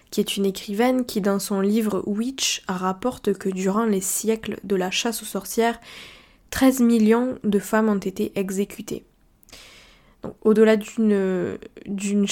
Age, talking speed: 20-39, 135 wpm